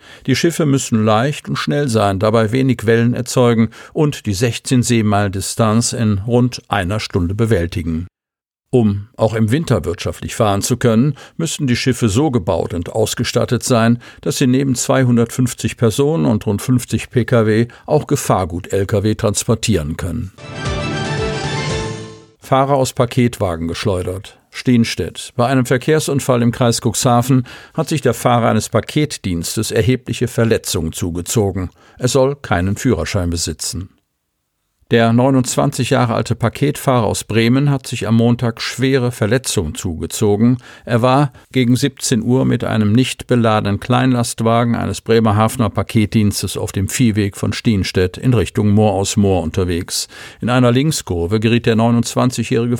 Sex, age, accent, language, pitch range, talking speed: male, 50-69, German, German, 105-125 Hz, 135 wpm